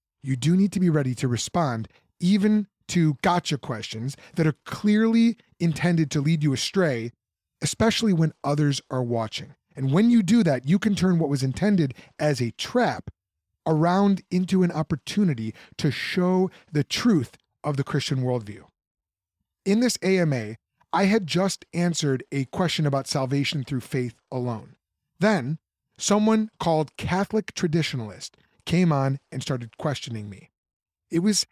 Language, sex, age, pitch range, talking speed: English, male, 30-49, 130-180 Hz, 150 wpm